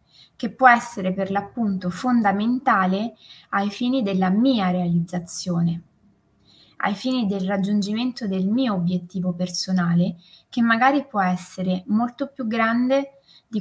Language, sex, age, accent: Italian, female, 20-39, native